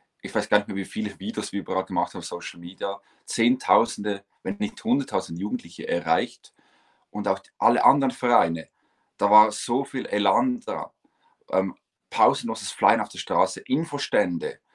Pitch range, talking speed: 95-115 Hz, 155 wpm